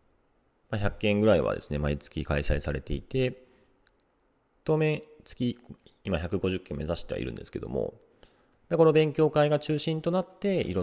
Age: 40-59